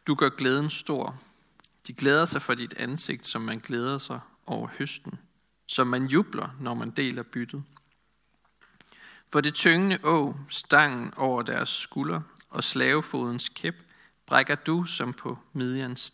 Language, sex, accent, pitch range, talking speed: Danish, male, native, 125-160 Hz, 145 wpm